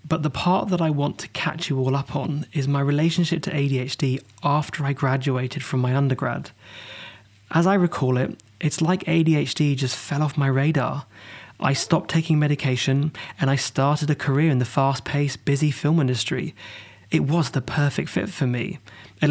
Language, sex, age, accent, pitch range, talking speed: English, male, 20-39, British, 125-150 Hz, 180 wpm